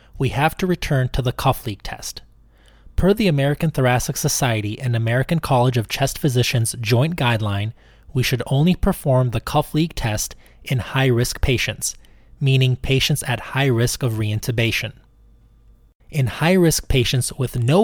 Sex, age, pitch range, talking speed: male, 20-39, 115-140 Hz, 150 wpm